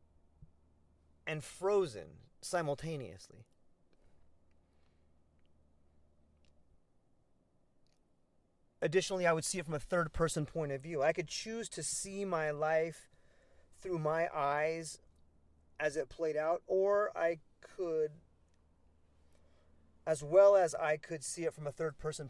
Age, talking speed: 30-49, 110 wpm